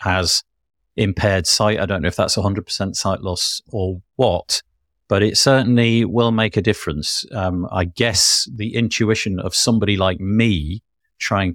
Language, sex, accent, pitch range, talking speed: English, male, British, 90-110 Hz, 155 wpm